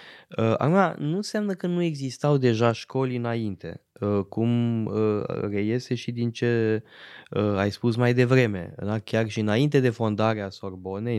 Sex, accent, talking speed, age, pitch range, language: male, native, 135 wpm, 20-39, 105-130 Hz, Romanian